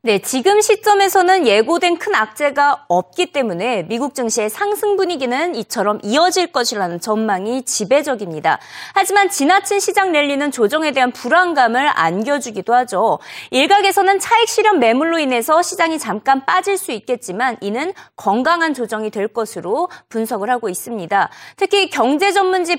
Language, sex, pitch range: Korean, female, 235-370 Hz